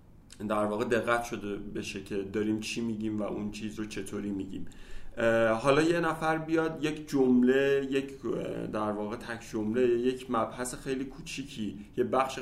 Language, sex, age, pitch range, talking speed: Persian, male, 30-49, 110-135 Hz, 155 wpm